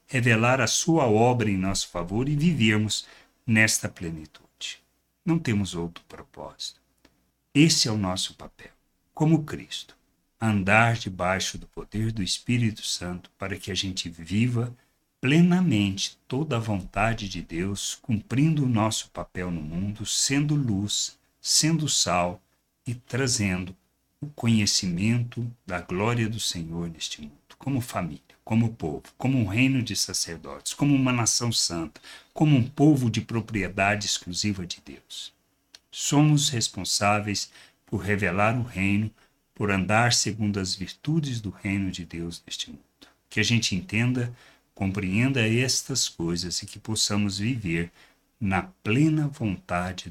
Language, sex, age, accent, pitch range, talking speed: Portuguese, male, 60-79, Brazilian, 95-125 Hz, 135 wpm